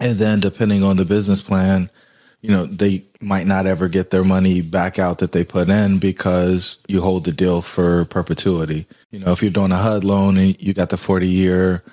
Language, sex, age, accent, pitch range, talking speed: English, male, 20-39, American, 90-105 Hz, 210 wpm